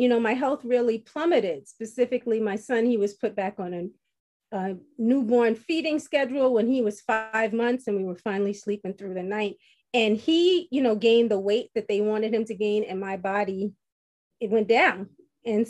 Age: 30-49